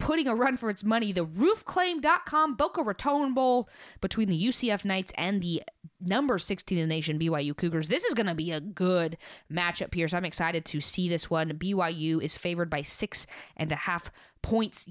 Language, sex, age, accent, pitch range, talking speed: English, female, 20-39, American, 160-200 Hz, 195 wpm